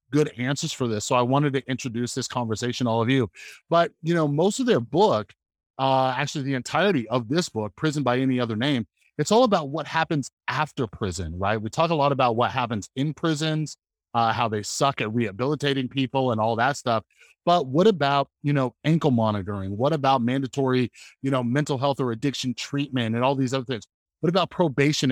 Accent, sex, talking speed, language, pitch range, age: American, male, 205 wpm, English, 115-140 Hz, 30-49